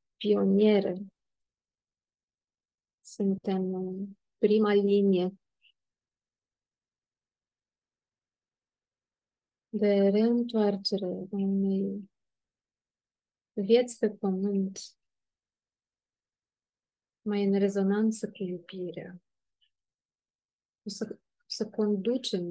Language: Romanian